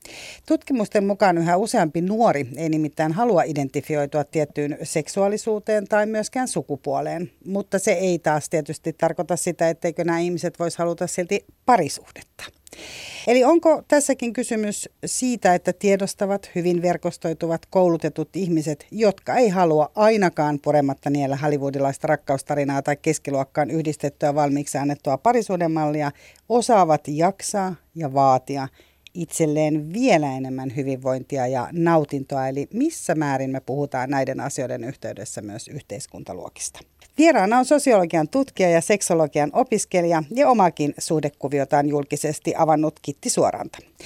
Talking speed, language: 120 wpm, Finnish